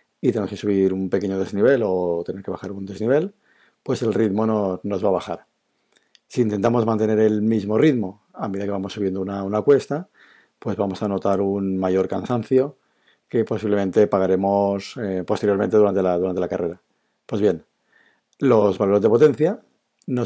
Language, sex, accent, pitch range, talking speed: Spanish, male, Spanish, 100-120 Hz, 175 wpm